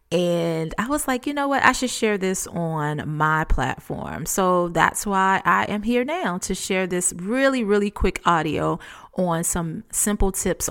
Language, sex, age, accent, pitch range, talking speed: English, female, 30-49, American, 170-210 Hz, 180 wpm